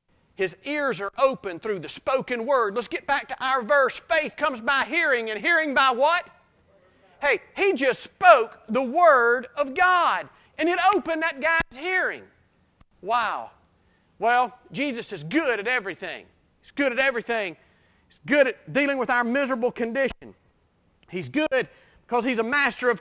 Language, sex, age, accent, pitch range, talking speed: English, male, 40-59, American, 225-300 Hz, 160 wpm